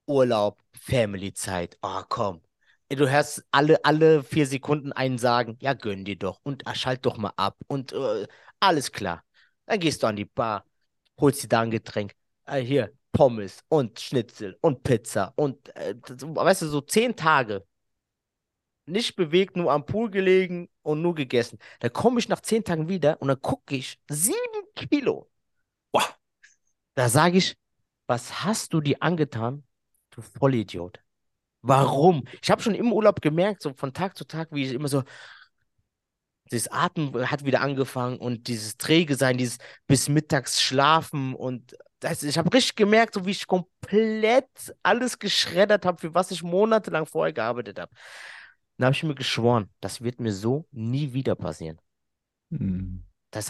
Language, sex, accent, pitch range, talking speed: German, male, German, 120-175 Hz, 165 wpm